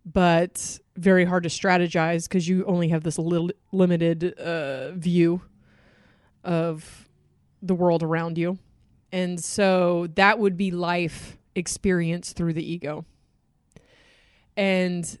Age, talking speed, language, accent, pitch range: 20-39, 120 wpm, English, American, 165-185 Hz